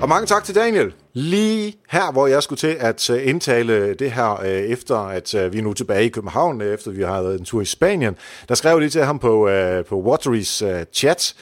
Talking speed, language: 205 wpm, Danish